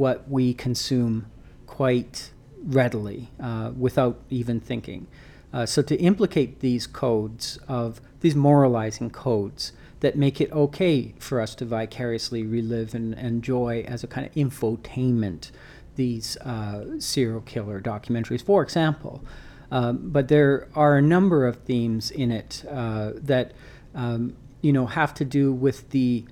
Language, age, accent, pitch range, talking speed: English, 40-59, American, 115-135 Hz, 145 wpm